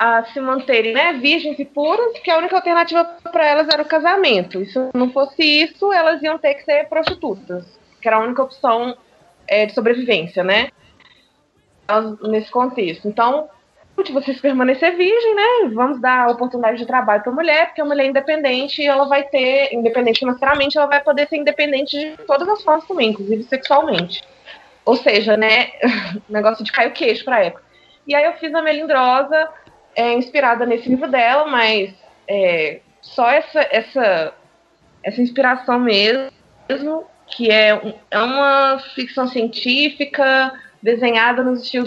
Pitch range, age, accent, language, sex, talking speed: 220-295 Hz, 20-39, Brazilian, Portuguese, female, 165 wpm